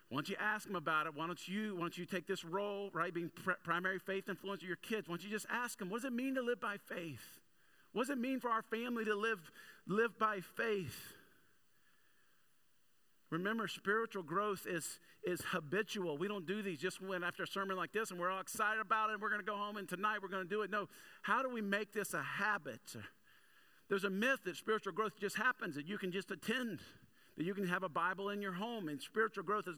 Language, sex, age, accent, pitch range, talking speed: English, male, 50-69, American, 170-215 Hz, 240 wpm